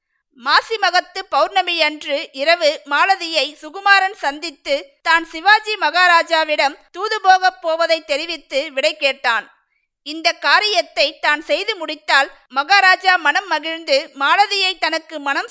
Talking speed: 95 wpm